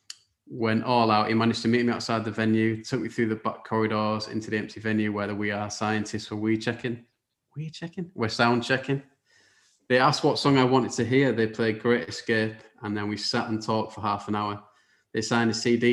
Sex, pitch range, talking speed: male, 110-120 Hz, 220 wpm